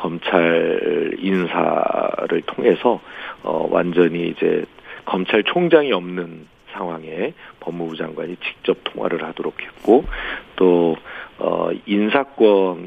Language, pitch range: Korean, 85-105 Hz